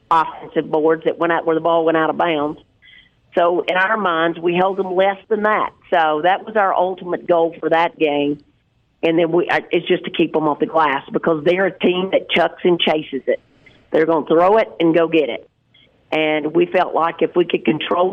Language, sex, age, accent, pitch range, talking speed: English, female, 50-69, American, 155-190 Hz, 225 wpm